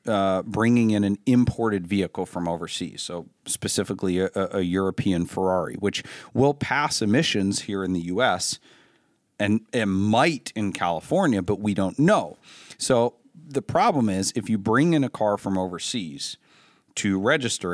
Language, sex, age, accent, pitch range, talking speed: English, male, 40-59, American, 95-120 Hz, 150 wpm